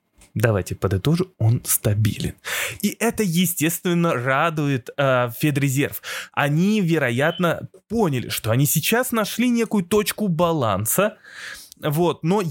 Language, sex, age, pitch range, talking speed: Russian, male, 20-39, 135-195 Hz, 100 wpm